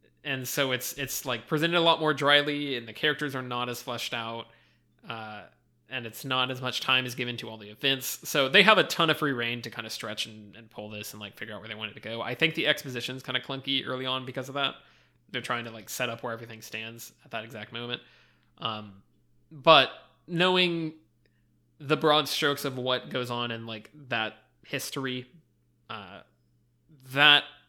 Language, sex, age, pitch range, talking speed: English, male, 20-39, 110-140 Hz, 215 wpm